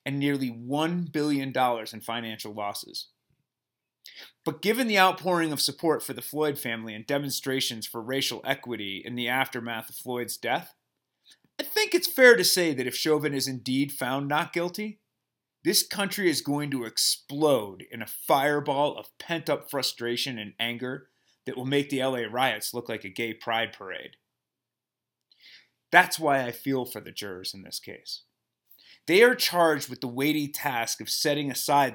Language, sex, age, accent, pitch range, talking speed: English, male, 30-49, American, 120-155 Hz, 165 wpm